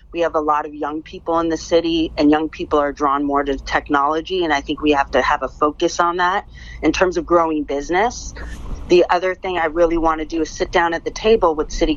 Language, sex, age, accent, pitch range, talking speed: English, female, 40-59, American, 150-170 Hz, 245 wpm